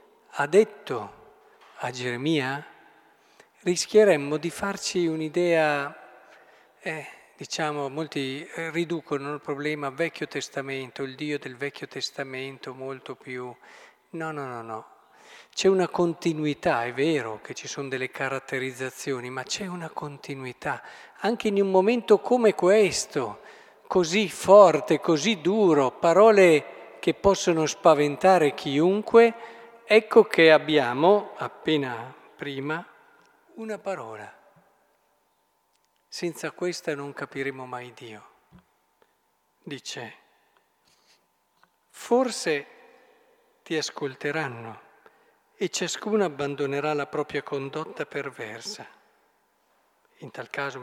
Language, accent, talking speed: Italian, native, 95 wpm